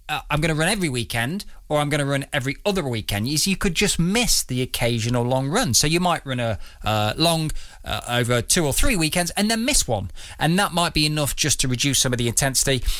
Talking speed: 245 wpm